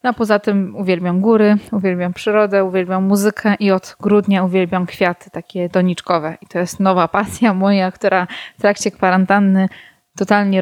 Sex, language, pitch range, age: female, Polish, 185-220 Hz, 20-39